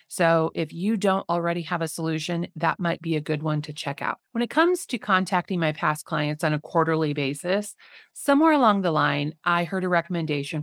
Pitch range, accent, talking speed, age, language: 160-220 Hz, American, 210 wpm, 30-49, English